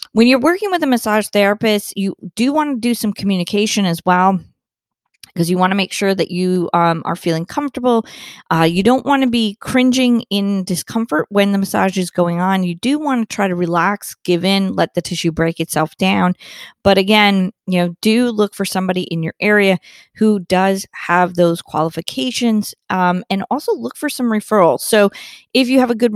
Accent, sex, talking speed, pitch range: American, female, 195 wpm, 180-230 Hz